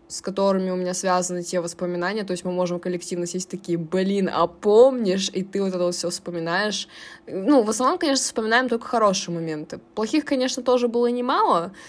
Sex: female